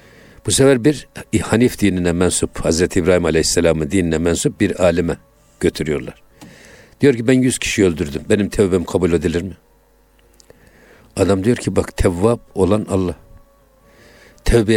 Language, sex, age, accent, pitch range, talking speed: Turkish, male, 60-79, native, 90-120 Hz, 135 wpm